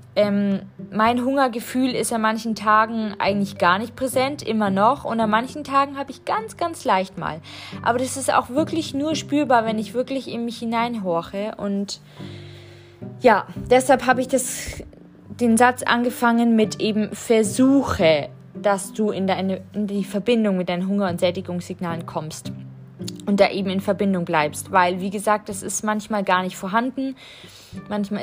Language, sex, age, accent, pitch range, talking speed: German, female, 20-39, German, 190-230 Hz, 165 wpm